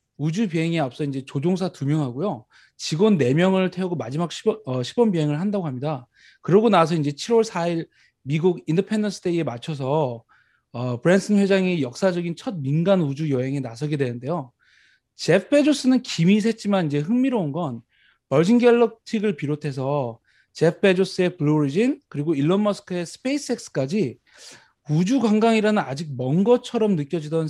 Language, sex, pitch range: Korean, male, 140-205 Hz